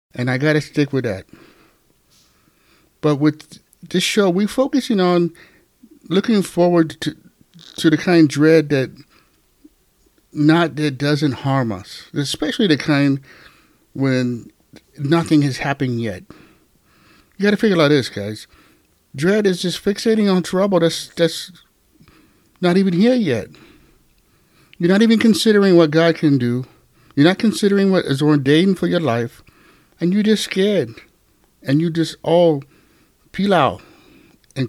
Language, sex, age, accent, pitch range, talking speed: English, male, 50-69, American, 140-185 Hz, 140 wpm